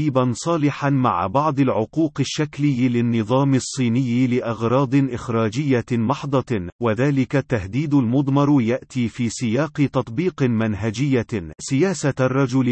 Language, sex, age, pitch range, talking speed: Arabic, male, 40-59, 115-140 Hz, 100 wpm